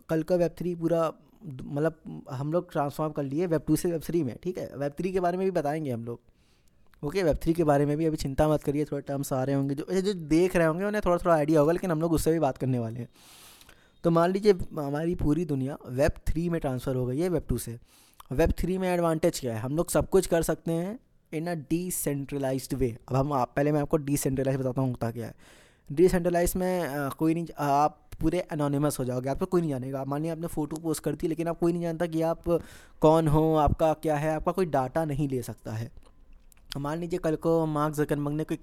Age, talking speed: 20-39, 240 wpm